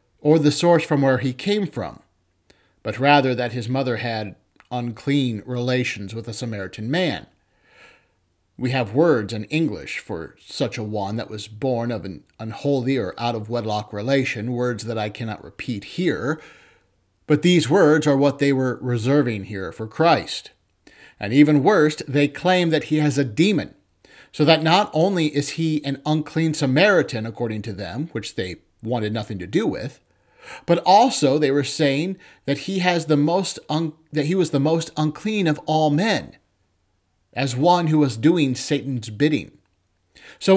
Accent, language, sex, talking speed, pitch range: American, English, male, 165 wpm, 115-155 Hz